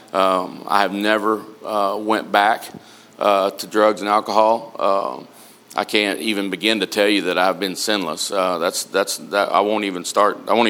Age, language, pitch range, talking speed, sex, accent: 40-59, English, 100-115 Hz, 195 wpm, male, American